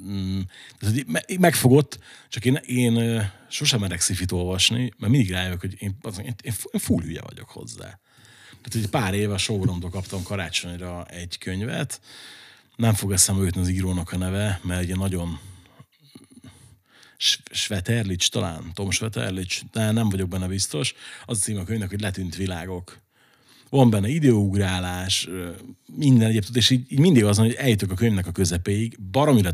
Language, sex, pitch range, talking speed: Hungarian, male, 95-120 Hz, 150 wpm